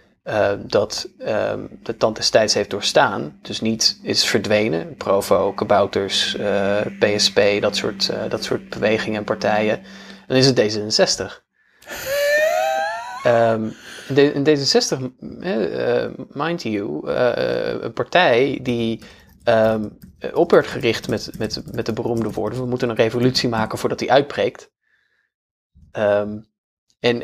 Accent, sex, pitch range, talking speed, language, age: Dutch, male, 105-140 Hz, 110 wpm, Dutch, 20-39